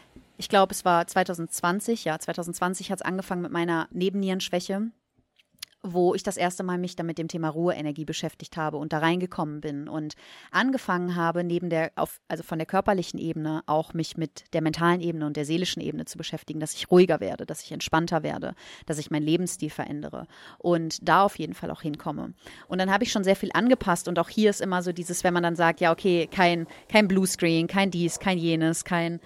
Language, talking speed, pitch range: German, 205 wpm, 165-195 Hz